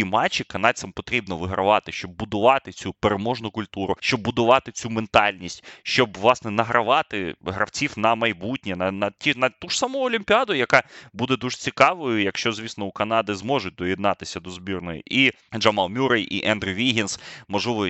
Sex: male